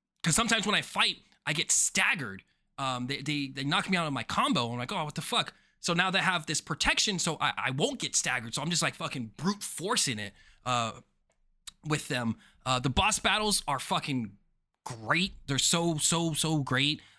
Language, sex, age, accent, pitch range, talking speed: English, male, 20-39, American, 130-175 Hz, 205 wpm